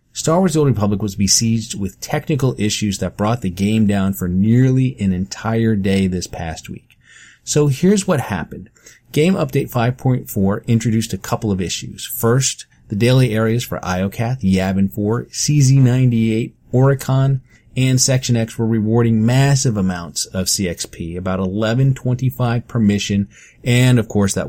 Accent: American